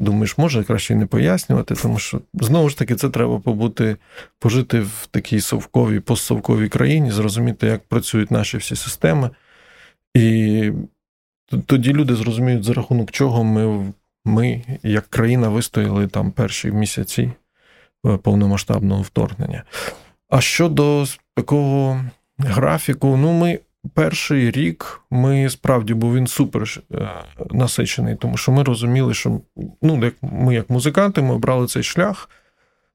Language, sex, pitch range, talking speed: Ukrainian, male, 110-135 Hz, 125 wpm